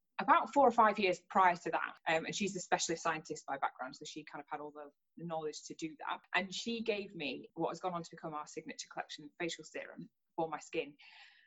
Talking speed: 235 wpm